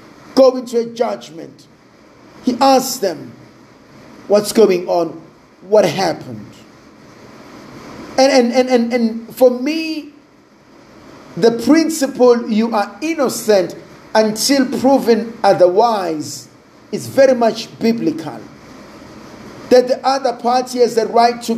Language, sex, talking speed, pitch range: English, male, 110 wpm, 205-265 Hz